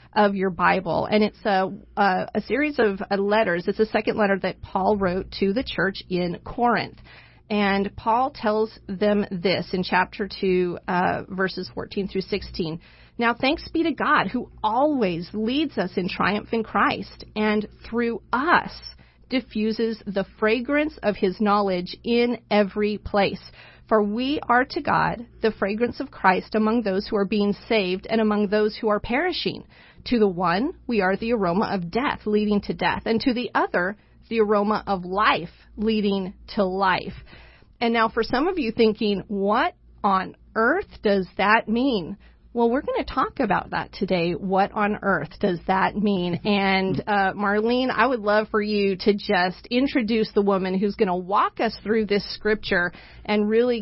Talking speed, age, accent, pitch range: 170 wpm, 40-59, American, 190-225 Hz